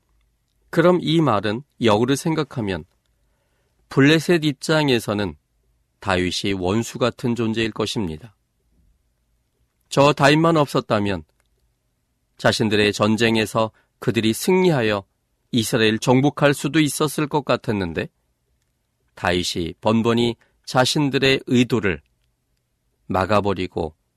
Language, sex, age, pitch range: Korean, male, 40-59, 90-135 Hz